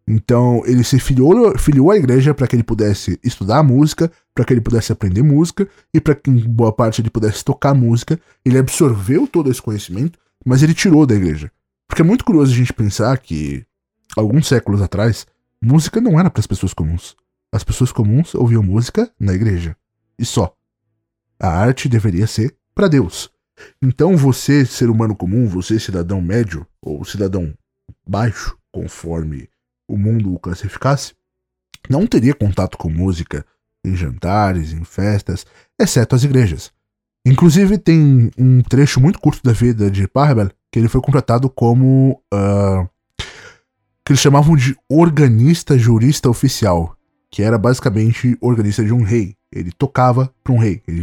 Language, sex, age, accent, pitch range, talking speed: Portuguese, male, 20-39, Brazilian, 100-135 Hz, 155 wpm